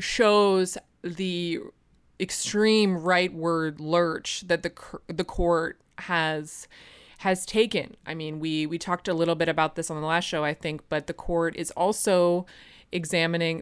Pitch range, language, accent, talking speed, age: 155-180 Hz, English, American, 150 wpm, 20-39